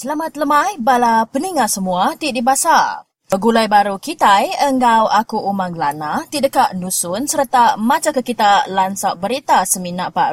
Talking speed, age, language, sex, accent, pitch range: 135 wpm, 20-39, English, female, Indonesian, 200-270 Hz